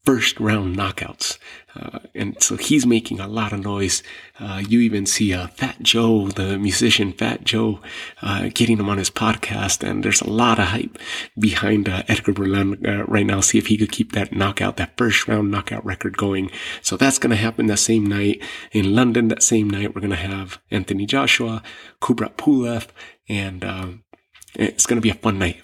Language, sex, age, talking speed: English, male, 30-49, 200 wpm